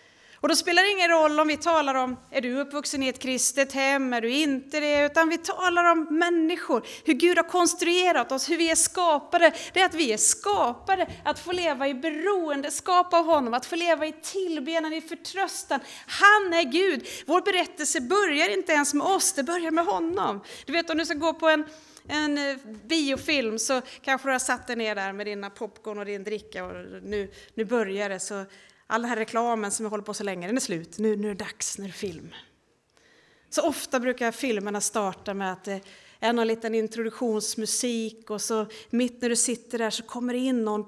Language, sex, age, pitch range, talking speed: Swedish, female, 30-49, 225-320 Hz, 205 wpm